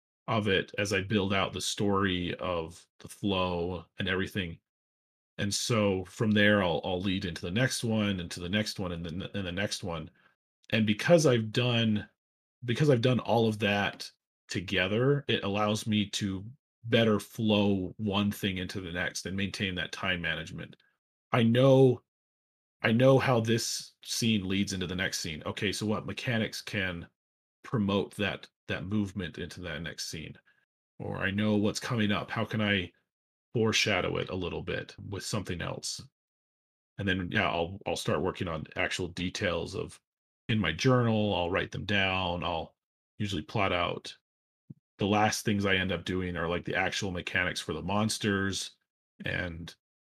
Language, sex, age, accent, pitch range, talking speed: English, male, 30-49, American, 90-110 Hz, 170 wpm